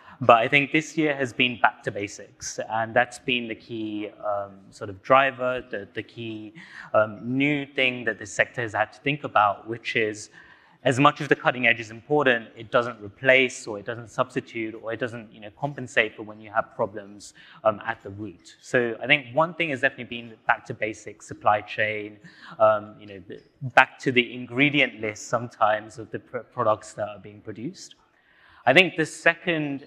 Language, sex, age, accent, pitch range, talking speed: English, male, 20-39, British, 110-135 Hz, 200 wpm